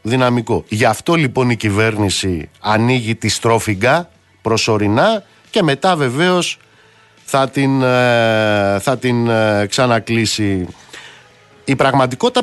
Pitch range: 110-165 Hz